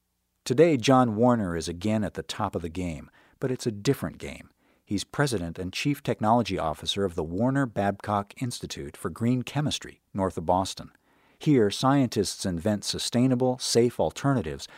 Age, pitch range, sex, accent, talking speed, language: 50-69, 90-125 Hz, male, American, 160 wpm, English